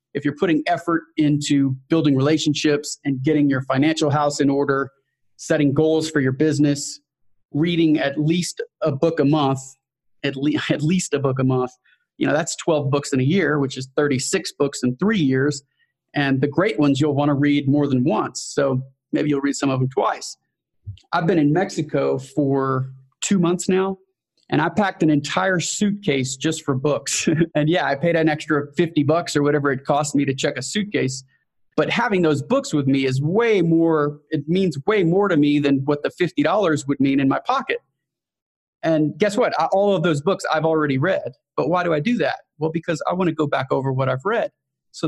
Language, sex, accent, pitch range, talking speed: English, male, American, 140-165 Hz, 205 wpm